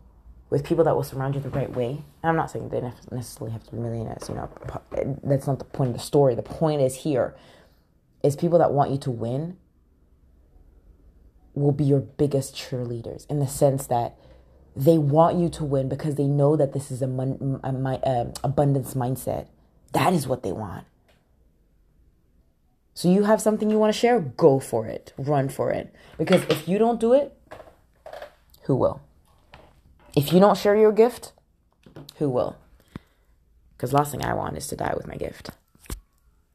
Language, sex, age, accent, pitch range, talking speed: English, female, 20-39, American, 120-160 Hz, 185 wpm